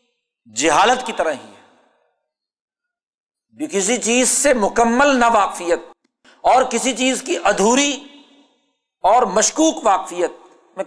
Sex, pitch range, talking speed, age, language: male, 205-280 Hz, 110 wpm, 50-69, Urdu